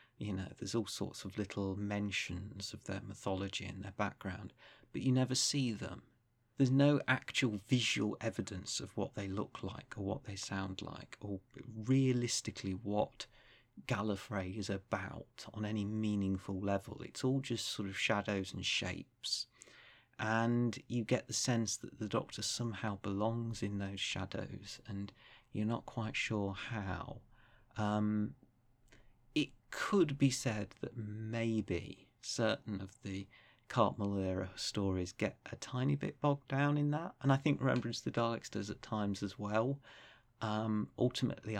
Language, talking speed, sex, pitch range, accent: English, 150 wpm, male, 100-120 Hz, British